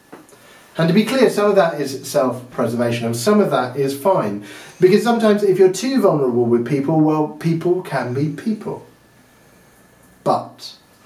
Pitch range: 130-185 Hz